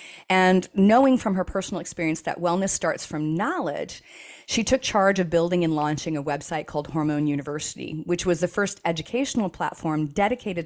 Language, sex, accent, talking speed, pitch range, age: English, female, American, 170 wpm, 160-210 Hz, 40-59